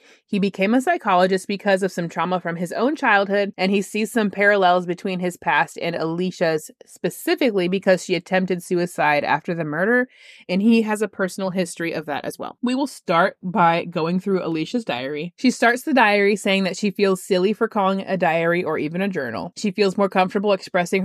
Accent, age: American, 20-39